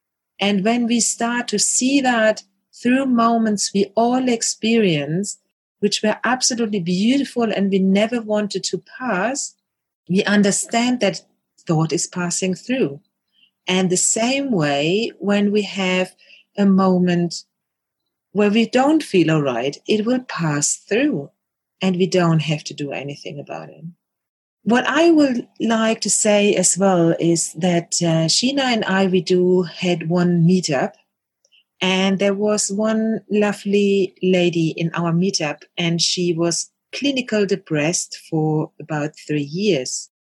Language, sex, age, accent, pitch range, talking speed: English, female, 40-59, German, 170-215 Hz, 140 wpm